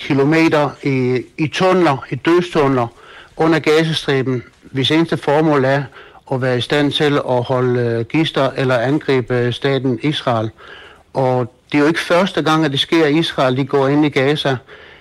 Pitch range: 130-155 Hz